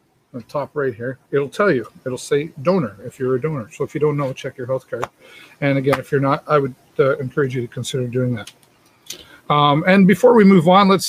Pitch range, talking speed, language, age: 130-160 Hz, 235 wpm, English, 50-69